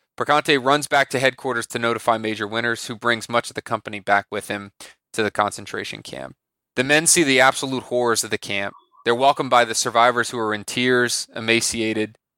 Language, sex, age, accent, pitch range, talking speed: English, male, 20-39, American, 110-135 Hz, 200 wpm